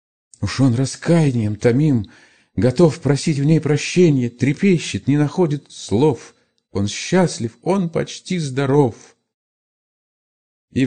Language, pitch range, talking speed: Russian, 90-125 Hz, 105 wpm